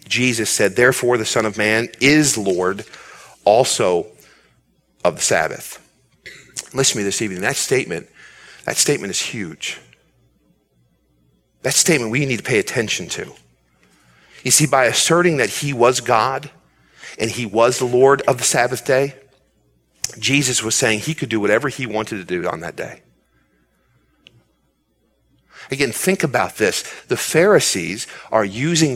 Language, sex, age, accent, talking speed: English, male, 40-59, American, 145 wpm